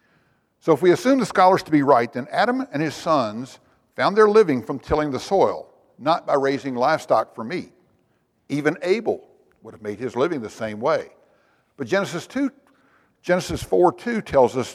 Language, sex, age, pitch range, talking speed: English, male, 60-79, 125-195 Hz, 185 wpm